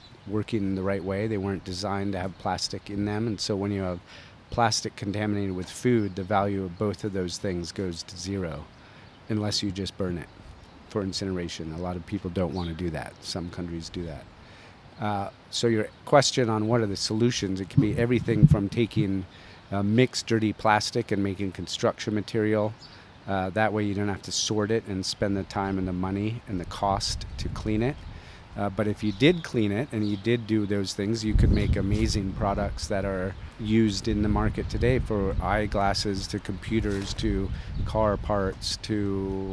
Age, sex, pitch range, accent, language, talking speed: 40-59, male, 95-110 Hz, American, English, 195 wpm